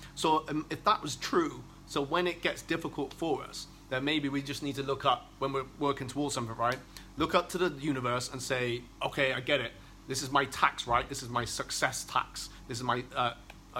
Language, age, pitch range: English, 30-49, 130-150 Hz